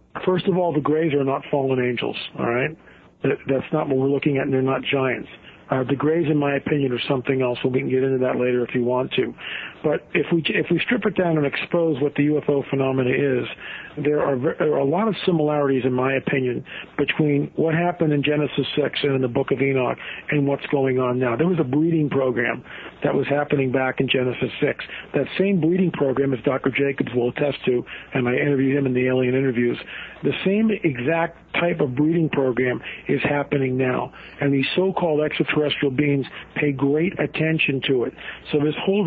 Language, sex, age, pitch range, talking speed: English, male, 50-69, 135-155 Hz, 205 wpm